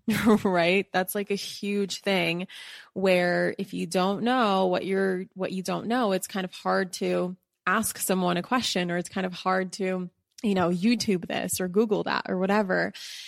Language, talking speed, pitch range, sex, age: English, 185 wpm, 180-205 Hz, female, 20-39